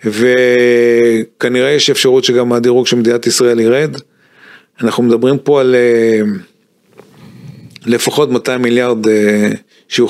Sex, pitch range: male, 120-150 Hz